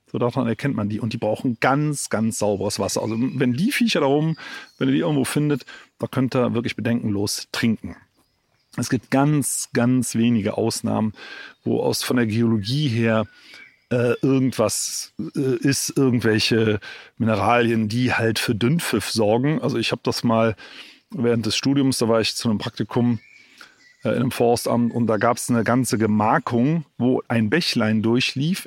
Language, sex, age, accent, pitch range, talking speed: German, male, 40-59, German, 110-135 Hz, 170 wpm